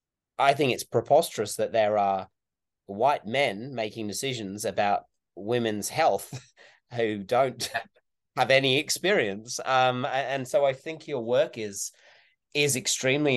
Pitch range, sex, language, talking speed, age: 100-120 Hz, male, English, 130 wpm, 30-49